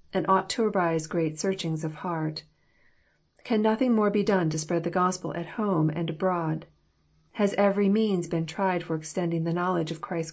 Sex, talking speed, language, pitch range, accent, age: female, 185 wpm, English, 165-200 Hz, American, 40-59